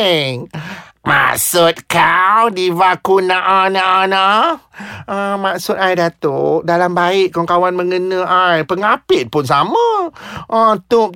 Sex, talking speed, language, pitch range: male, 95 wpm, Malay, 170-255 Hz